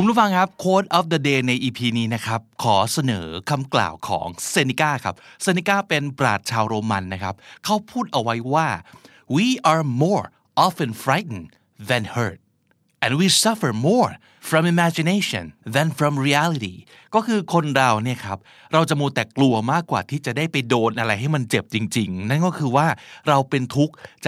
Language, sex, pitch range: Thai, male, 110-155 Hz